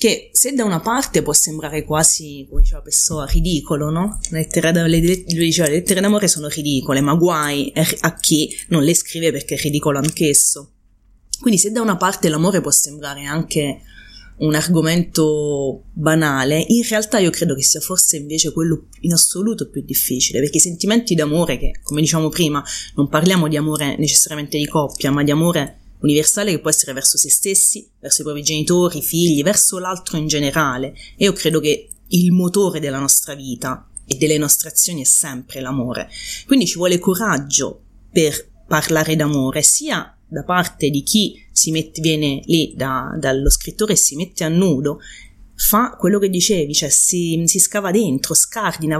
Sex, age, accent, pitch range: female, 30-49, native, 145-180 Hz